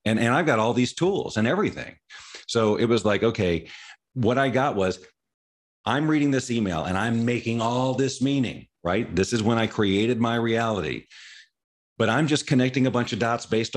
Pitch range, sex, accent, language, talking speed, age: 95-125 Hz, male, American, English, 195 wpm, 40-59